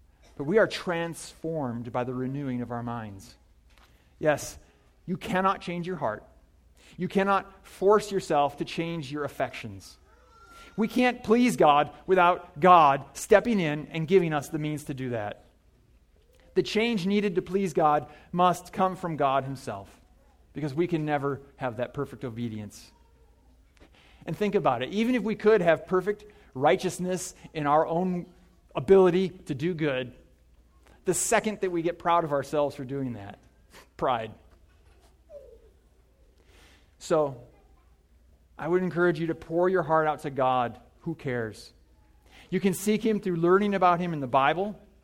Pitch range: 120-185 Hz